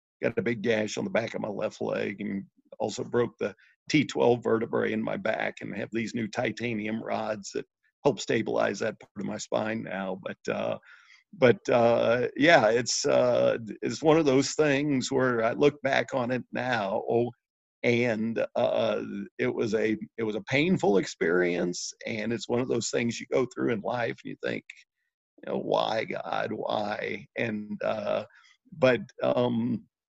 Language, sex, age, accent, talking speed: English, male, 50-69, American, 175 wpm